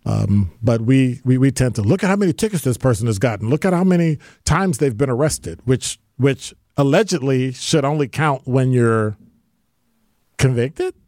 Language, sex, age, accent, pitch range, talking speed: English, male, 40-59, American, 110-150 Hz, 180 wpm